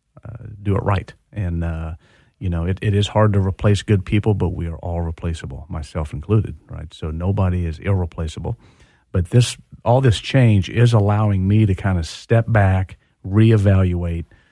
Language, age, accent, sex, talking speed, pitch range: English, 40-59, American, male, 175 wpm, 90-110 Hz